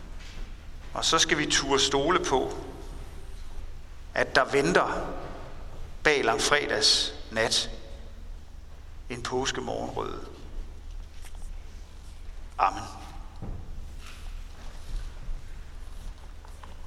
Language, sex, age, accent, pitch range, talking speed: Danish, male, 60-79, native, 75-100 Hz, 55 wpm